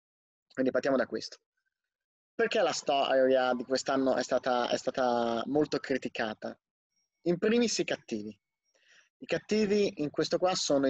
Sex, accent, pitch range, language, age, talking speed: male, native, 125-160 Hz, Italian, 20-39, 130 wpm